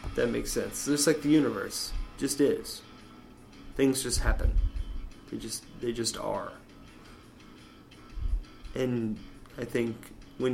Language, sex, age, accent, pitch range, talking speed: English, male, 20-39, American, 105-115 Hz, 130 wpm